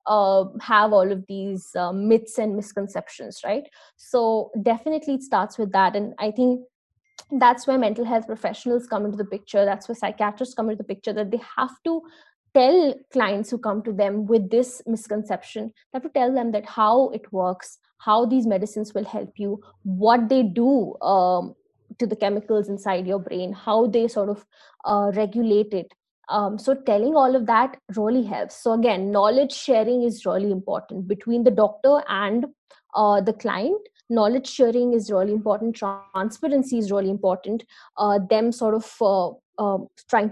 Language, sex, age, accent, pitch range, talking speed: English, female, 20-39, Indian, 200-240 Hz, 175 wpm